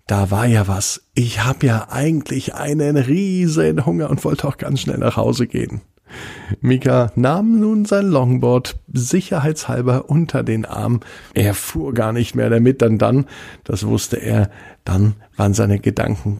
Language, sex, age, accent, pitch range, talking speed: German, male, 50-69, German, 100-130 Hz, 155 wpm